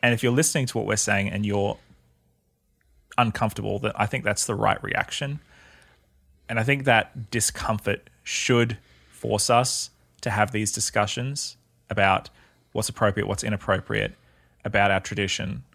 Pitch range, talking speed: 95-120 Hz, 140 wpm